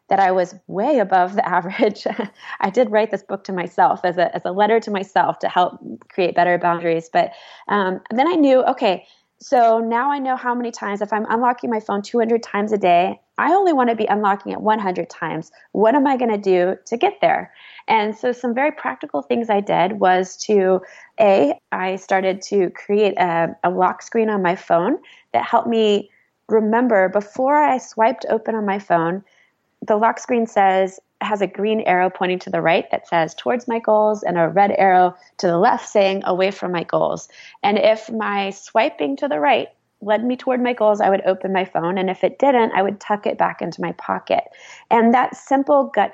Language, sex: English, female